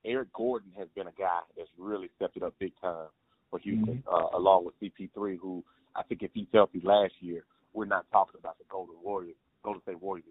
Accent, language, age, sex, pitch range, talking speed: American, English, 30-49, male, 100-120 Hz, 215 wpm